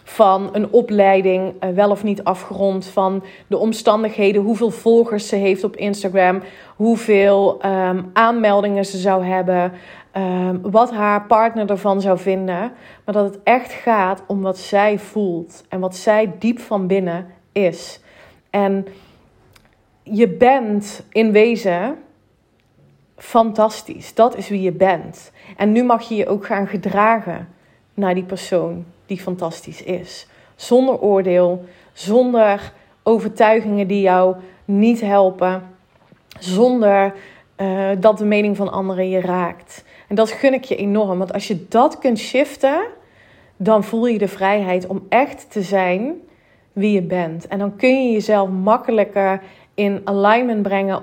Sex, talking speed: female, 140 wpm